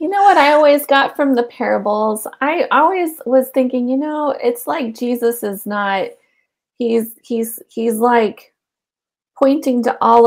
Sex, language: female, English